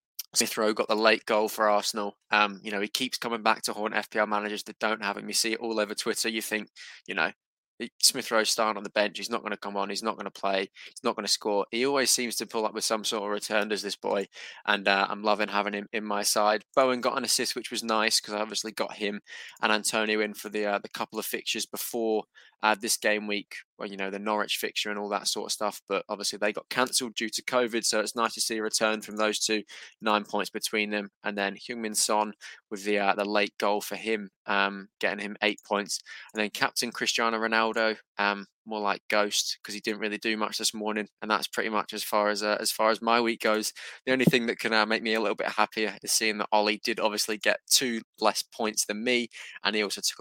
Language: English